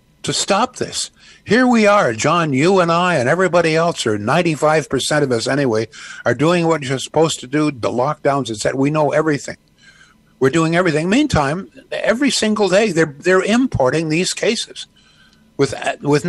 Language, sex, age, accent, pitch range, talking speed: English, male, 60-79, American, 115-155 Hz, 175 wpm